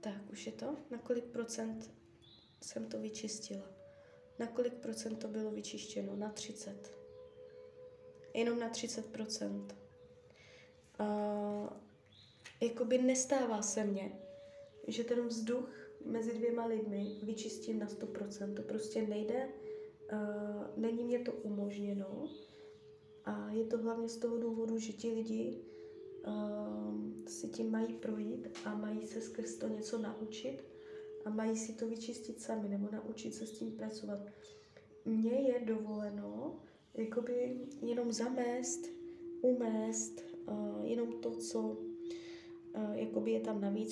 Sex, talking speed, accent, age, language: female, 130 wpm, native, 20-39, Czech